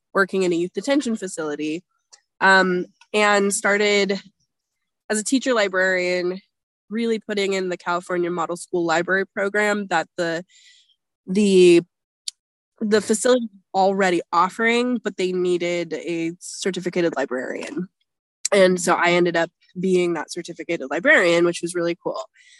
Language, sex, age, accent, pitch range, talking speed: English, female, 20-39, American, 175-210 Hz, 125 wpm